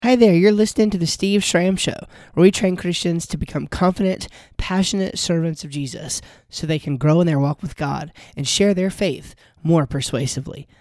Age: 20-39